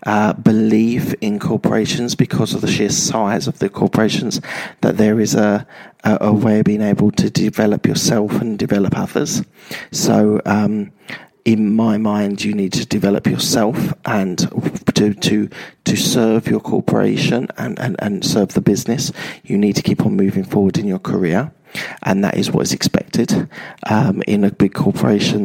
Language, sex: English, male